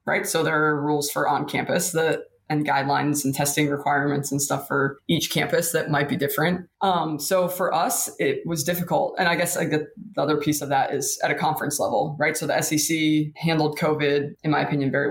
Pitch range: 145-160 Hz